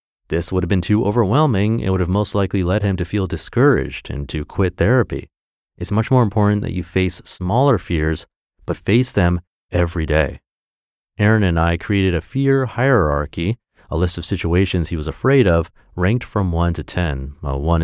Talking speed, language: 190 wpm, English